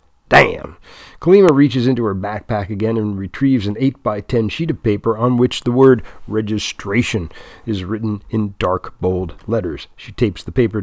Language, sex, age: English, male, 50-69